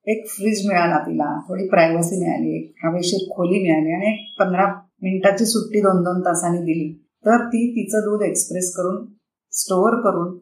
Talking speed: 160 wpm